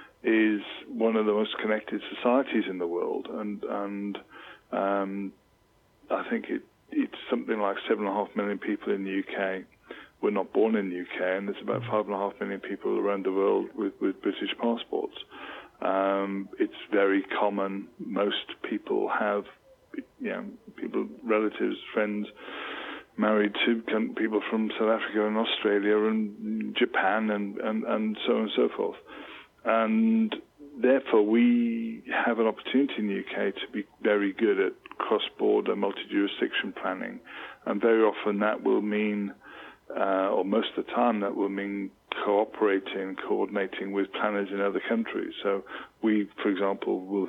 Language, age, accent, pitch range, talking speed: English, 20-39, British, 100-115 Hz, 160 wpm